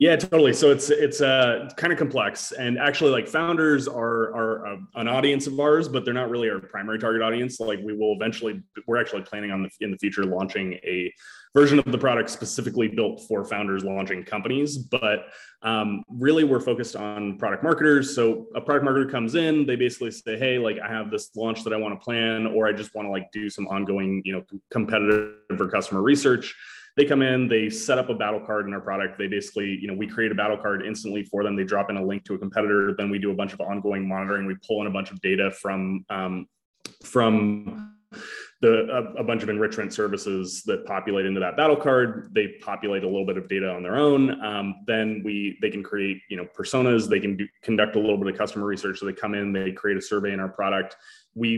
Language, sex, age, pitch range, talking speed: English, male, 20-39, 100-120 Hz, 230 wpm